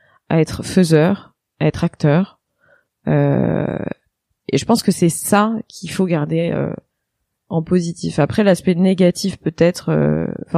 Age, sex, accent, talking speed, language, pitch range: 20-39, female, French, 135 wpm, French, 150-190 Hz